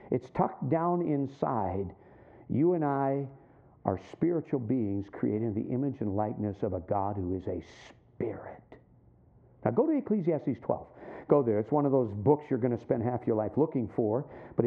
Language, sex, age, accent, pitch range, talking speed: English, male, 50-69, American, 125-175 Hz, 180 wpm